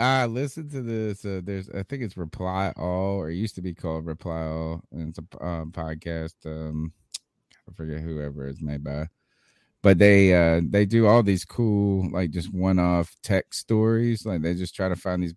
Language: English